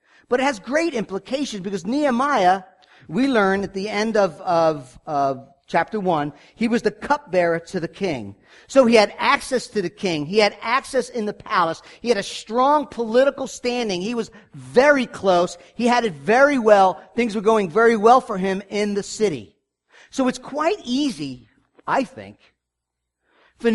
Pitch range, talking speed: 180-255 Hz, 175 wpm